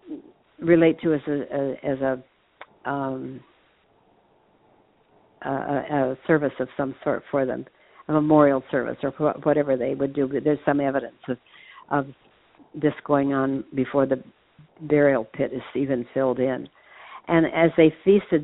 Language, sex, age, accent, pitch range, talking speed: English, female, 60-79, American, 135-155 Hz, 140 wpm